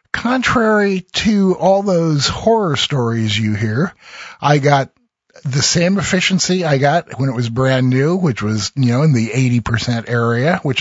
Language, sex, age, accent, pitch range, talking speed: English, male, 50-69, American, 125-175 Hz, 160 wpm